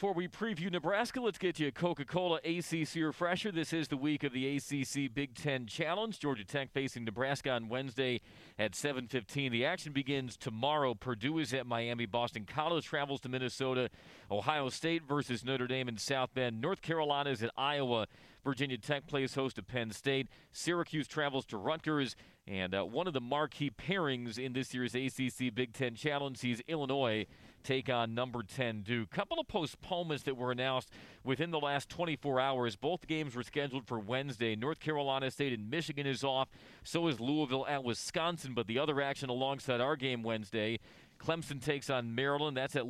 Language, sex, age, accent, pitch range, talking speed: English, male, 40-59, American, 125-155 Hz, 185 wpm